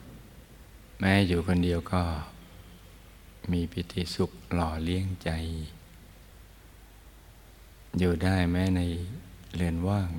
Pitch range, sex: 85-90 Hz, male